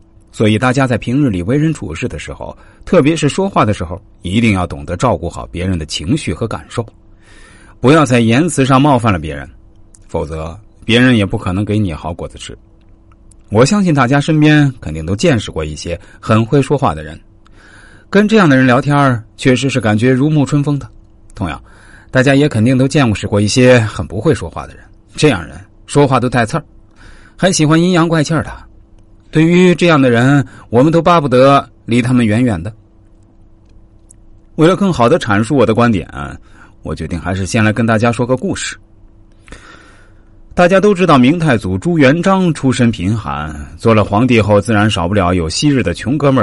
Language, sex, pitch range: Chinese, male, 105-140 Hz